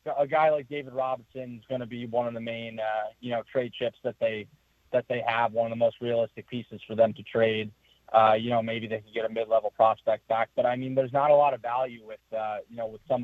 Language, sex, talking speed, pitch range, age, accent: English, male, 265 wpm, 110-125 Hz, 20-39, American